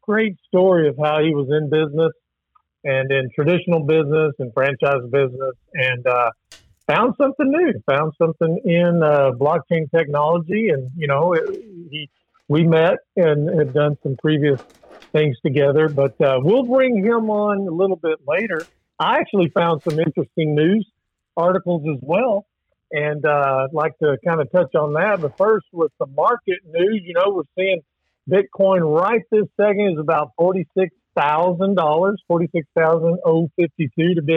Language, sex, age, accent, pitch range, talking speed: English, male, 50-69, American, 150-190 Hz, 170 wpm